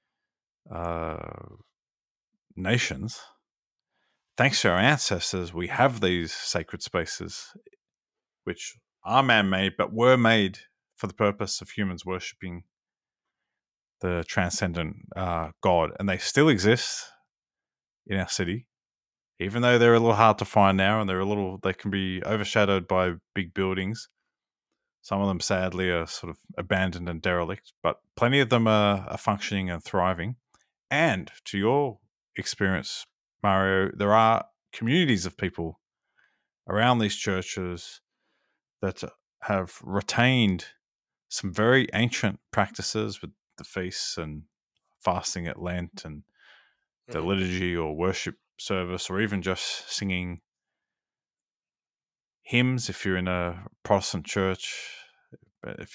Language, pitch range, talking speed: English, 90-110 Hz, 125 wpm